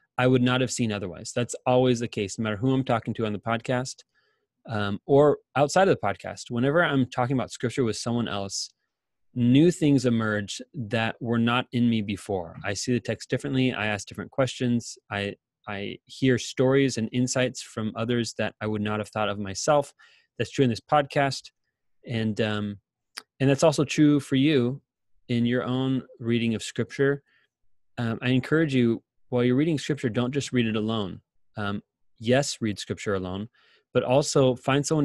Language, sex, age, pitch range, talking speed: English, male, 20-39, 110-135 Hz, 185 wpm